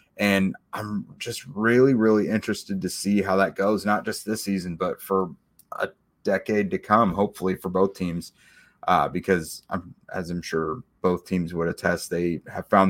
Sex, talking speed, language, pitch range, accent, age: male, 175 wpm, English, 90-100 Hz, American, 30-49